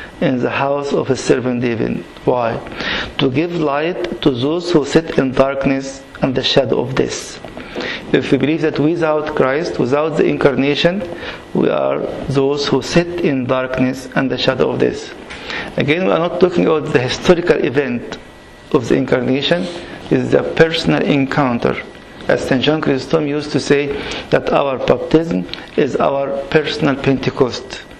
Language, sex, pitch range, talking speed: English, male, 130-160 Hz, 160 wpm